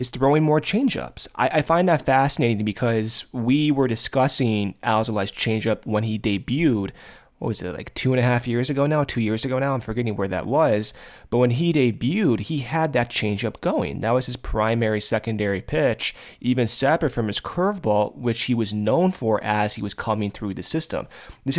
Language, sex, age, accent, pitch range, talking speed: English, male, 30-49, American, 105-135 Hz, 200 wpm